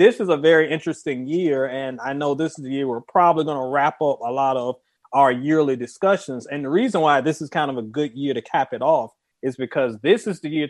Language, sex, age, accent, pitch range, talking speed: English, male, 30-49, American, 135-170 Hz, 260 wpm